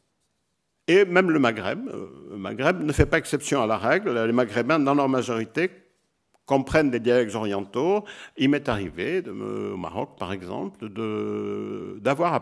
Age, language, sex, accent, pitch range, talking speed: 60-79, French, male, French, 110-145 Hz, 155 wpm